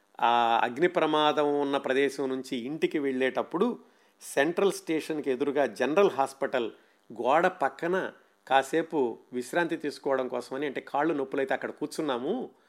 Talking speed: 115 wpm